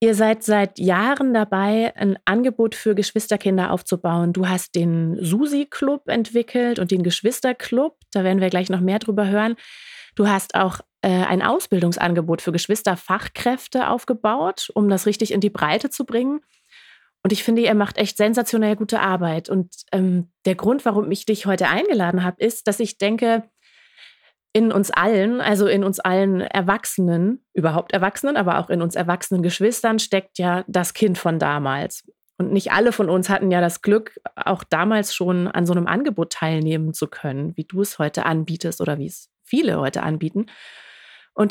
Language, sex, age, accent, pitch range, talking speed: German, female, 30-49, German, 185-230 Hz, 170 wpm